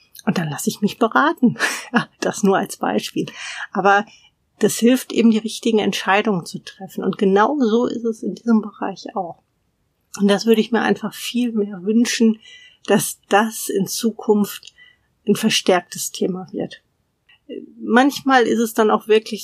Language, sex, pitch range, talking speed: German, female, 200-235 Hz, 155 wpm